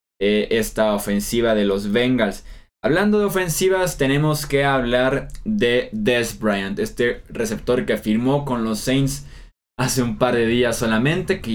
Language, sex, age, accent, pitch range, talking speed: Spanish, male, 20-39, Mexican, 110-140 Hz, 145 wpm